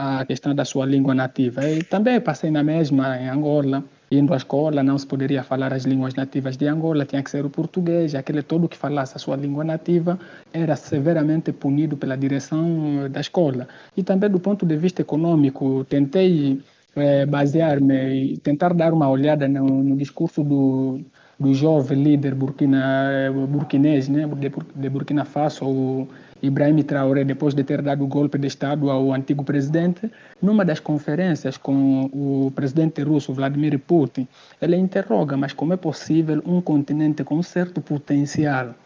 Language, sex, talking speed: Portuguese, male, 165 wpm